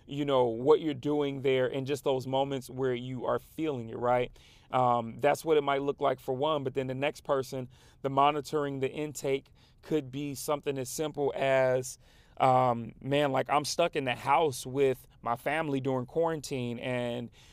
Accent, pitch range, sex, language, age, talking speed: American, 130-145 Hz, male, English, 30-49, 185 wpm